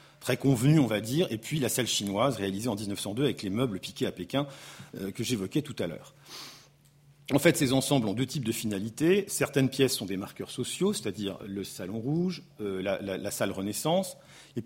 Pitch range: 115-145 Hz